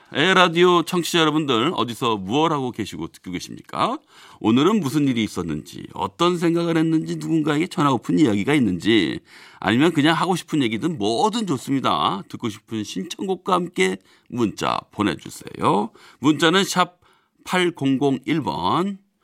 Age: 40-59